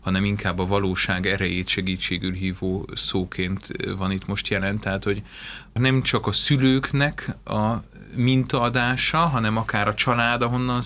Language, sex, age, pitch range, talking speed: Hungarian, male, 30-49, 100-125 Hz, 140 wpm